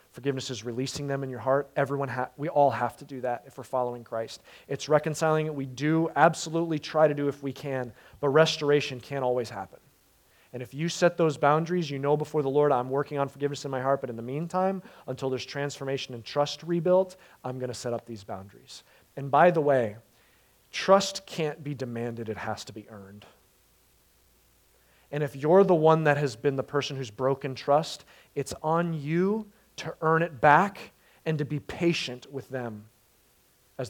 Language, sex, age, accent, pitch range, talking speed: English, male, 30-49, American, 130-160 Hz, 195 wpm